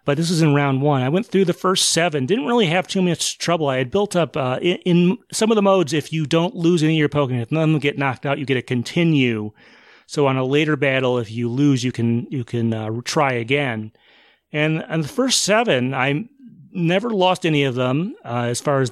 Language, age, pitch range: English, 30-49, 130-175 Hz